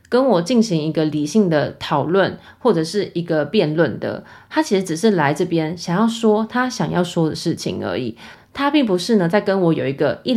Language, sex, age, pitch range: Chinese, female, 20-39, 165-220 Hz